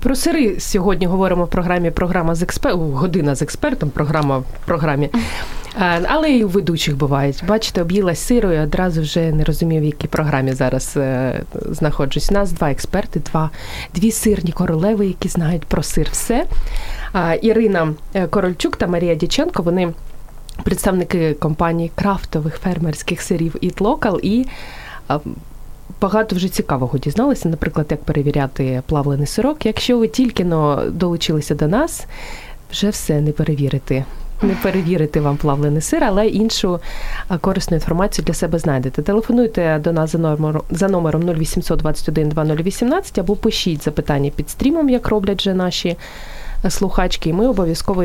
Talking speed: 135 wpm